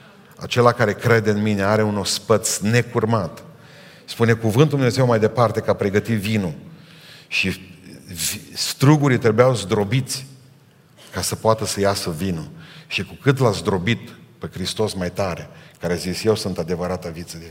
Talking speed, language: 150 wpm, Romanian